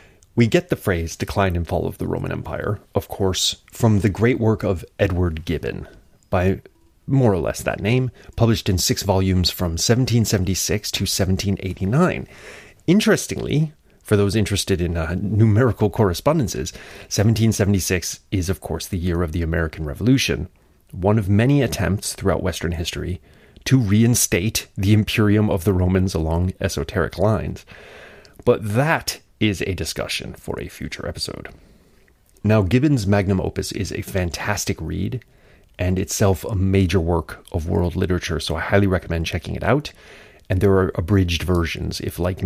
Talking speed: 155 wpm